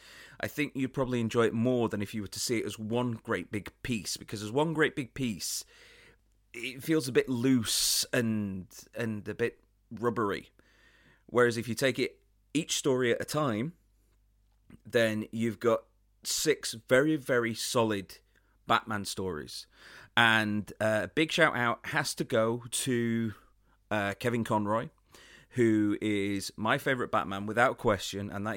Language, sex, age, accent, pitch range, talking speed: English, male, 30-49, British, 100-120 Hz, 160 wpm